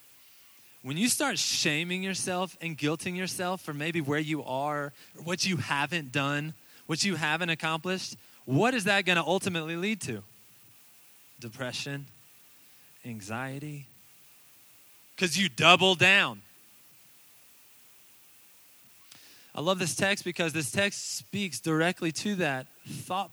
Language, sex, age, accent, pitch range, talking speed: English, male, 20-39, American, 135-190 Hz, 120 wpm